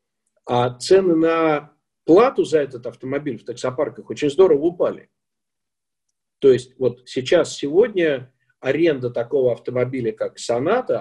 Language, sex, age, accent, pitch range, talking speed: Russian, male, 50-69, native, 140-220 Hz, 120 wpm